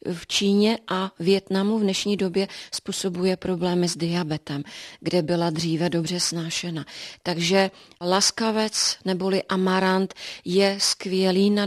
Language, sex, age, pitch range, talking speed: Czech, female, 30-49, 185-205 Hz, 120 wpm